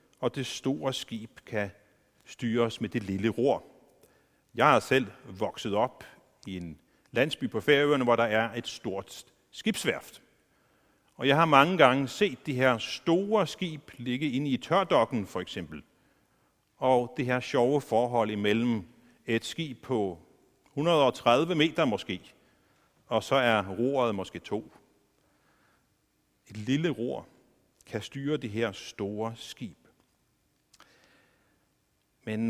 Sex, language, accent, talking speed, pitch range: male, Danish, native, 130 wpm, 115-185 Hz